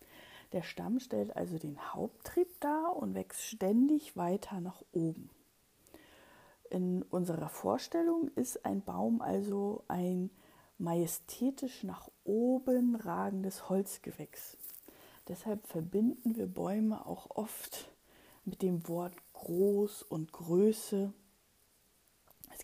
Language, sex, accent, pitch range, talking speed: German, female, German, 180-240 Hz, 105 wpm